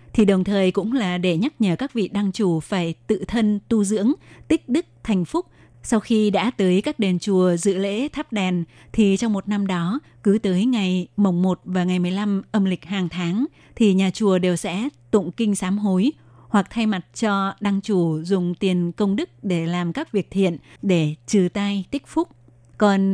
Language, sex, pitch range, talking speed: Vietnamese, female, 180-215 Hz, 205 wpm